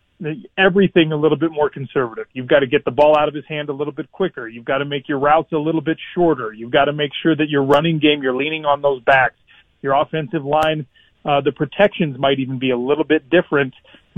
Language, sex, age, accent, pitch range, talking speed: English, male, 40-59, American, 135-155 Hz, 245 wpm